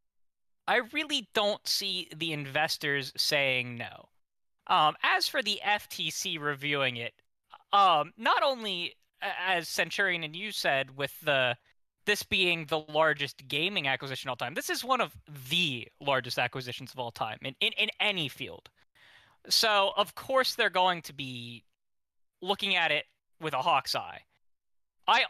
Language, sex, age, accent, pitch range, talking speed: English, male, 20-39, American, 135-180 Hz, 150 wpm